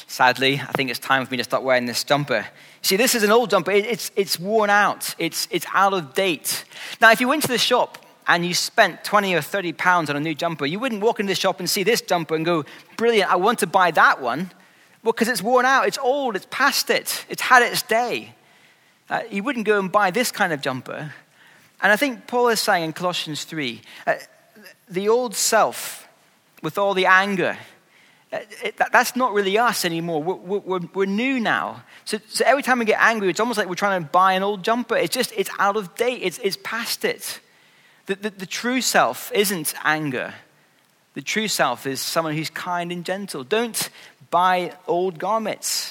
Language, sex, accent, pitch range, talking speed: English, male, British, 175-225 Hz, 210 wpm